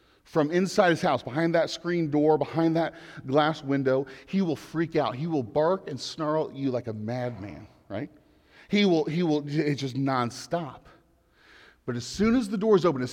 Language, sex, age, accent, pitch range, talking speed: English, male, 40-59, American, 125-170 Hz, 195 wpm